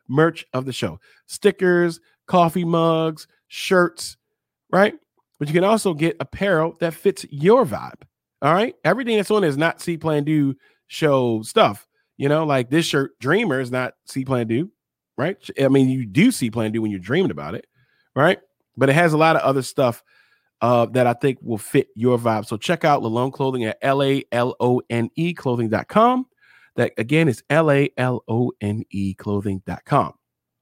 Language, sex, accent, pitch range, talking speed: English, male, American, 120-180 Hz, 165 wpm